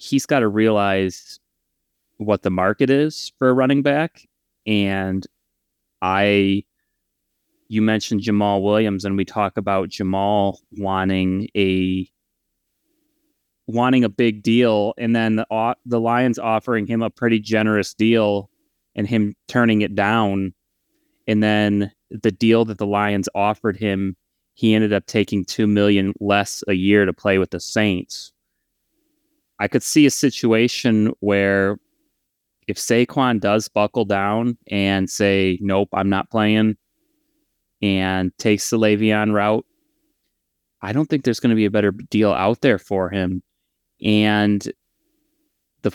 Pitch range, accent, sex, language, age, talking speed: 100-120 Hz, American, male, English, 30-49, 140 wpm